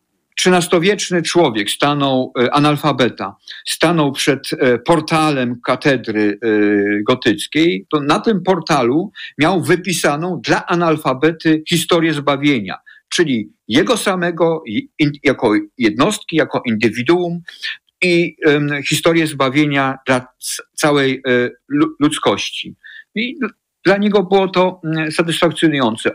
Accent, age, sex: native, 50-69, male